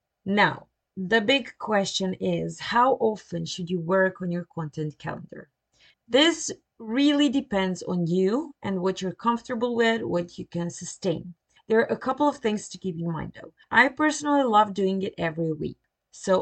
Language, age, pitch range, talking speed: English, 30-49, 170-225 Hz, 170 wpm